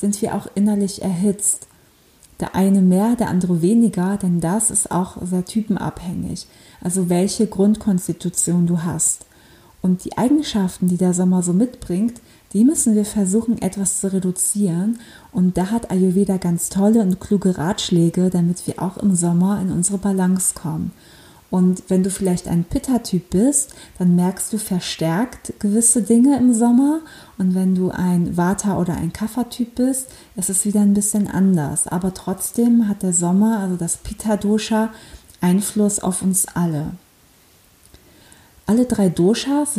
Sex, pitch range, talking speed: female, 180-210 Hz, 150 wpm